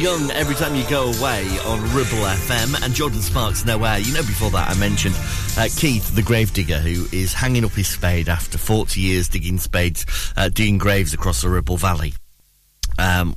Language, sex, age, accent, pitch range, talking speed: English, male, 30-49, British, 85-130 Hz, 190 wpm